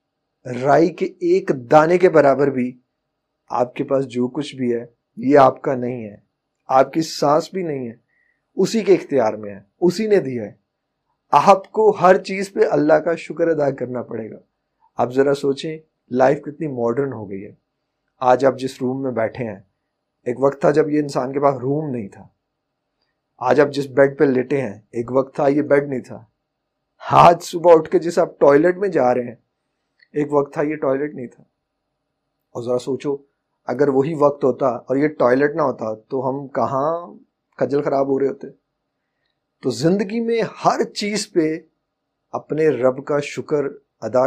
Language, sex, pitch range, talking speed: Urdu, male, 125-160 Hz, 185 wpm